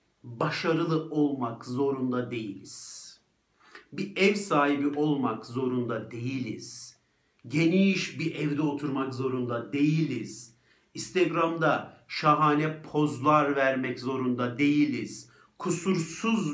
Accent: native